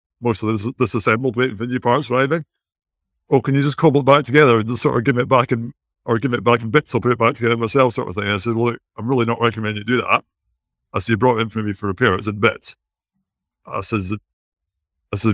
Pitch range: 105-125 Hz